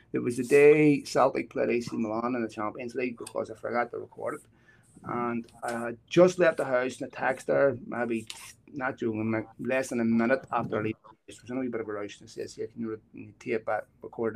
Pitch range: 110-130 Hz